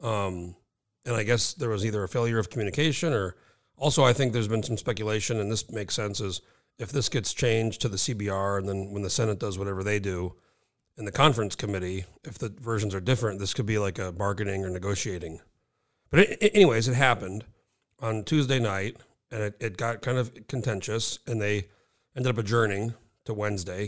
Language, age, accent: English, 40-59, American